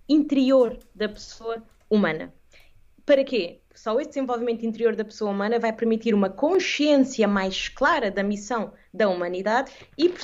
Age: 20-39